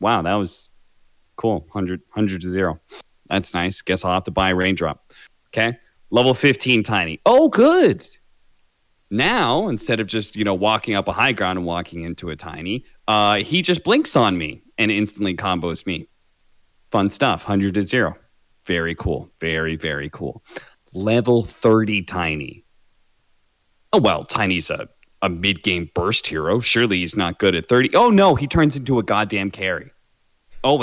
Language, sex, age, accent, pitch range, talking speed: English, male, 30-49, American, 90-115 Hz, 165 wpm